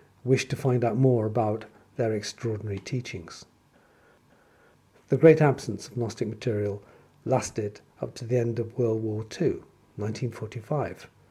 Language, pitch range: English, 115-135 Hz